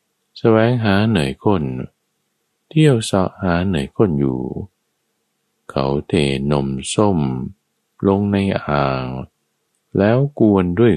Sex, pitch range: male, 70-110 Hz